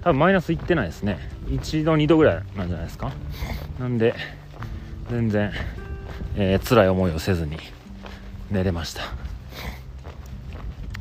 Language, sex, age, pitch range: Japanese, male, 30-49, 85-110 Hz